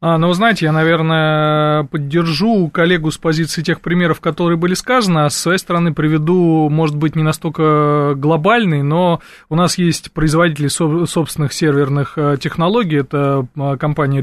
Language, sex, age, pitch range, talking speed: Russian, male, 20-39, 145-170 Hz, 145 wpm